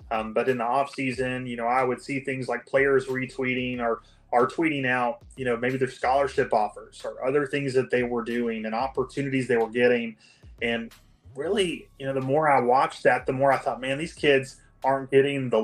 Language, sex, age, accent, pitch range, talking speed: English, male, 30-49, American, 115-135 Hz, 215 wpm